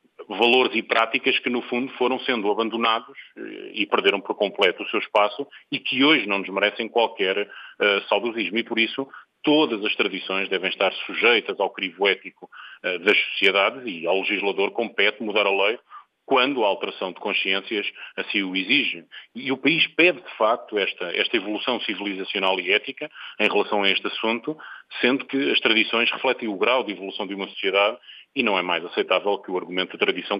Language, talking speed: Portuguese, 180 wpm